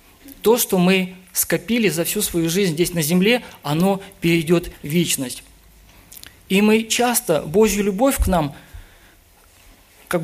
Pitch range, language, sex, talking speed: 145-200 Hz, Russian, male, 135 wpm